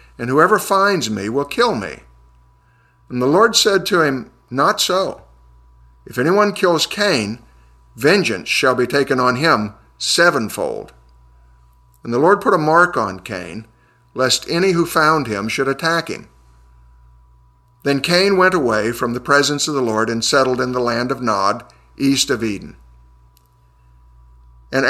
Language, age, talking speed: English, 50-69, 150 wpm